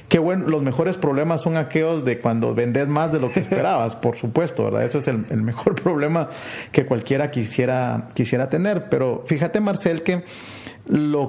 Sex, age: male, 40-59